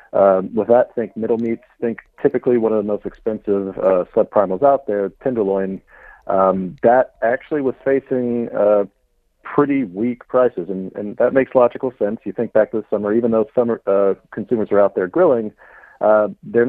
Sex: male